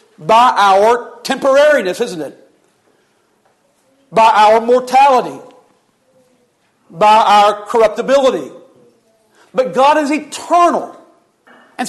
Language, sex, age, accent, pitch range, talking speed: English, male, 40-59, American, 235-275 Hz, 80 wpm